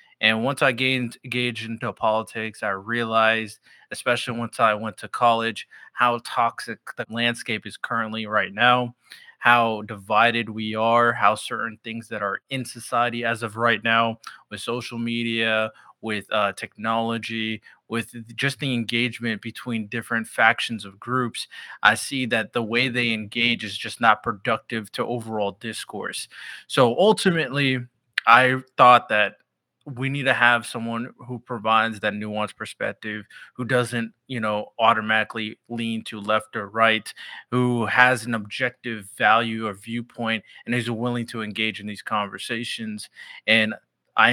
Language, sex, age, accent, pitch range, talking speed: English, male, 20-39, American, 110-120 Hz, 150 wpm